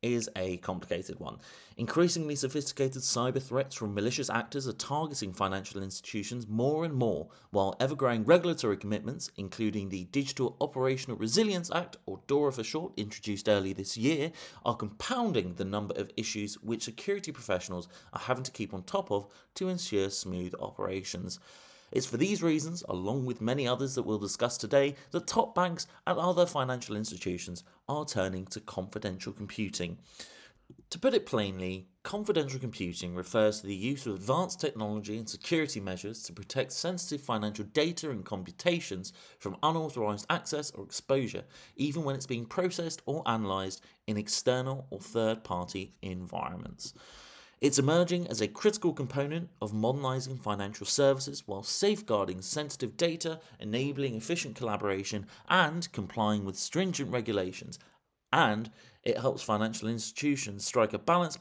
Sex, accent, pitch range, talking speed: male, British, 105-145 Hz, 145 wpm